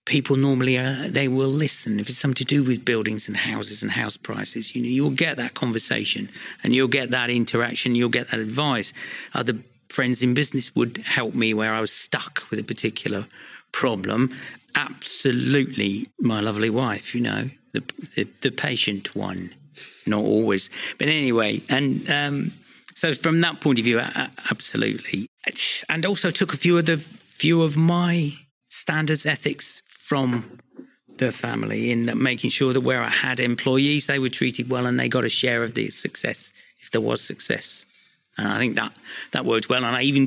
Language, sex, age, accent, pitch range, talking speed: English, male, 50-69, British, 120-145 Hz, 185 wpm